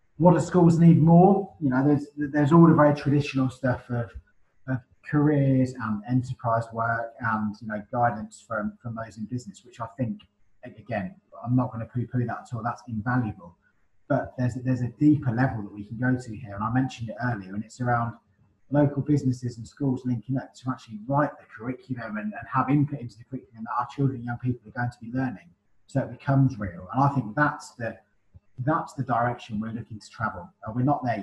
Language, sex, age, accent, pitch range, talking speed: English, male, 20-39, British, 110-130 Hz, 215 wpm